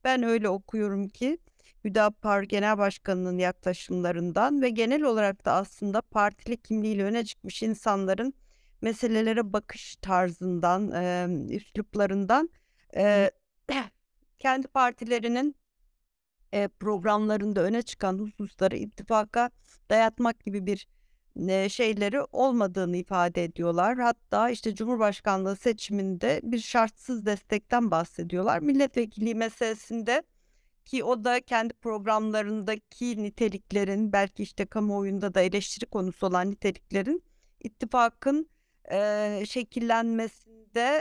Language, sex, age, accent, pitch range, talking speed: Turkish, female, 60-79, native, 200-245 Hz, 90 wpm